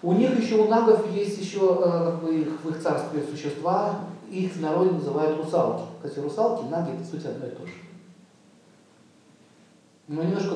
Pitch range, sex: 150-190 Hz, male